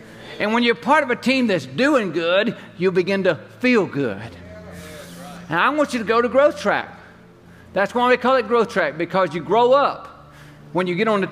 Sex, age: male, 50-69